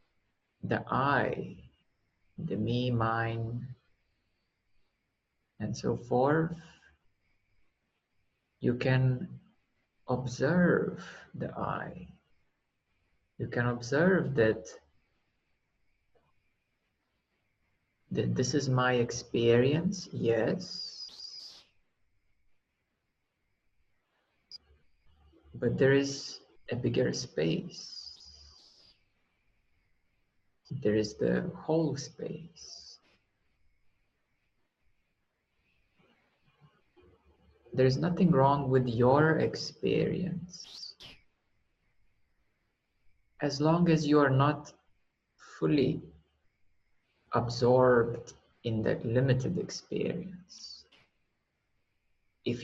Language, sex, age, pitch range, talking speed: English, male, 50-69, 100-140 Hz, 60 wpm